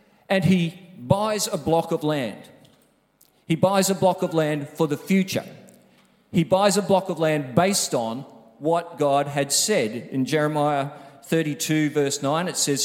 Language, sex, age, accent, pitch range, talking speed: English, male, 40-59, Australian, 145-185 Hz, 165 wpm